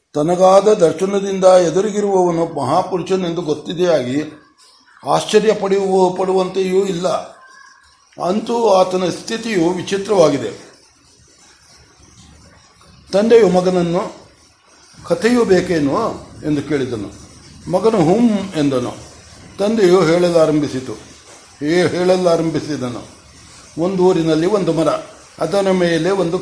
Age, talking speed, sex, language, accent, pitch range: 60-79, 75 wpm, male, Kannada, native, 160-185 Hz